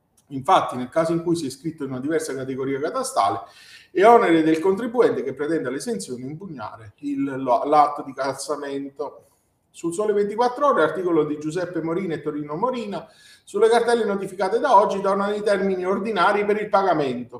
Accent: native